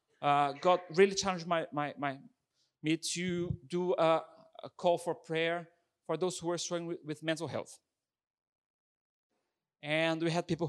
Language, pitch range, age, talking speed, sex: English, 135-165 Hz, 30-49, 150 wpm, male